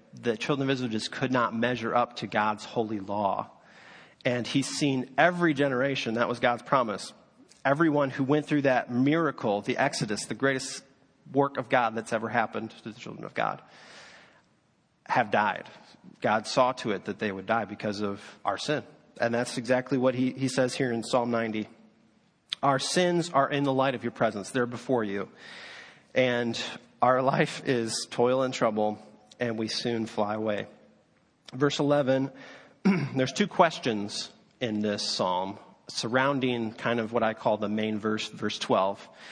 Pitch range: 110-140 Hz